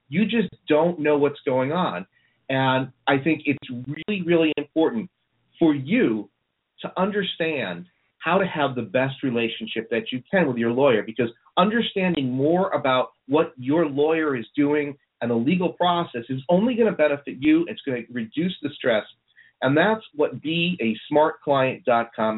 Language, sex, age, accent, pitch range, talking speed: English, male, 40-59, American, 120-155 Hz, 160 wpm